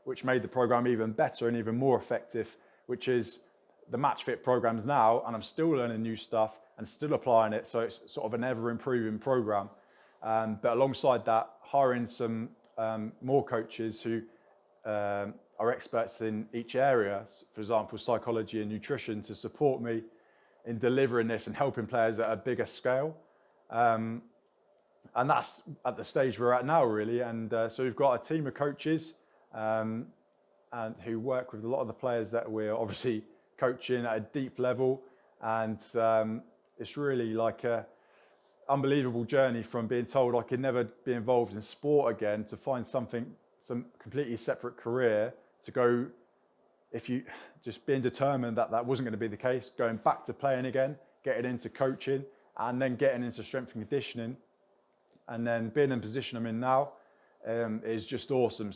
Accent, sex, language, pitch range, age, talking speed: British, male, English, 110-130 Hz, 20-39, 175 wpm